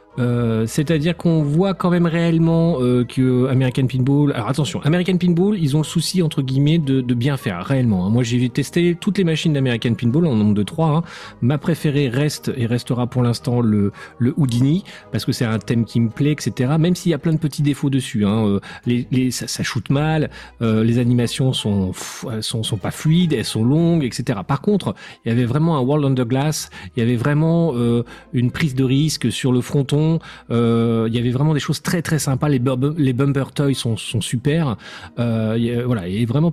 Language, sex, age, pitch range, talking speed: French, male, 40-59, 115-150 Hz, 220 wpm